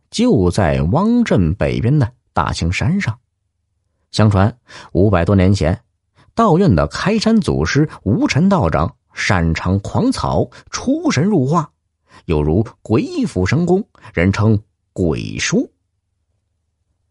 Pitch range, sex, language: 85-120 Hz, male, Chinese